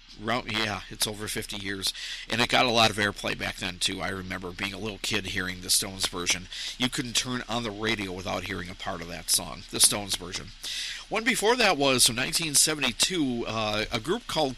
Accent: American